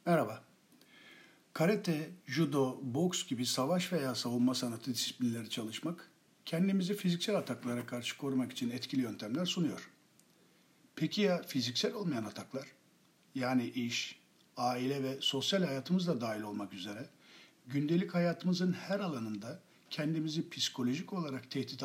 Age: 60-79